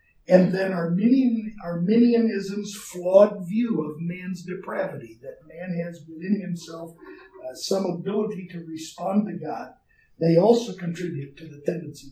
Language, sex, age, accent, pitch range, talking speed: English, male, 50-69, American, 175-230 Hz, 130 wpm